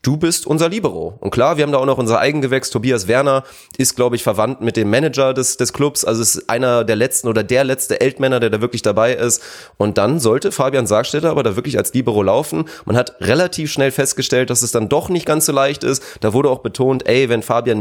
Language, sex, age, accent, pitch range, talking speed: German, male, 30-49, German, 115-140 Hz, 240 wpm